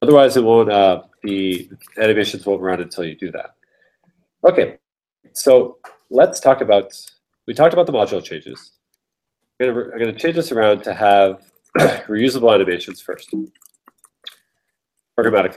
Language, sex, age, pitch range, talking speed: English, male, 30-49, 95-130 Hz, 135 wpm